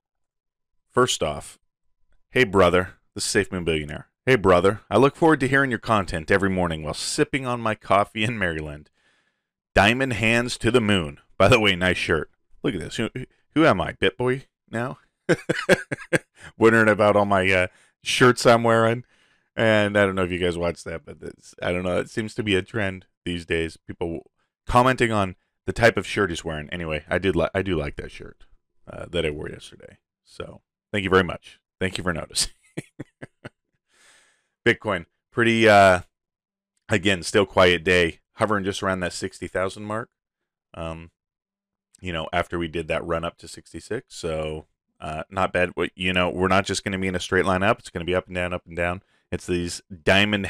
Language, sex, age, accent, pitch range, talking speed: English, male, 30-49, American, 85-110 Hz, 190 wpm